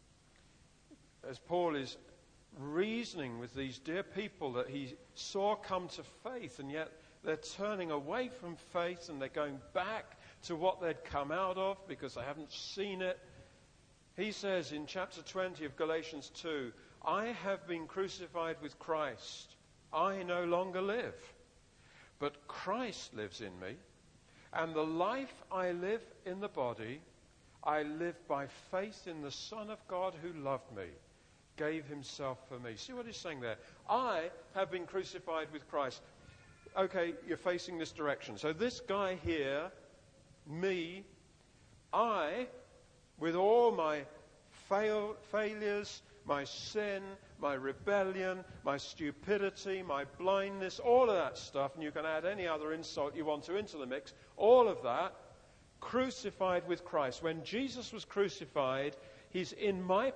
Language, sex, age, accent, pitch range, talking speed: English, male, 50-69, British, 145-195 Hz, 145 wpm